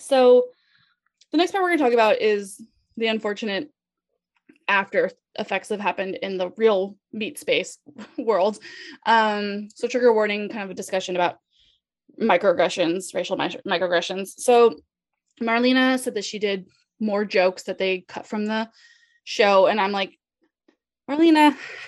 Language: English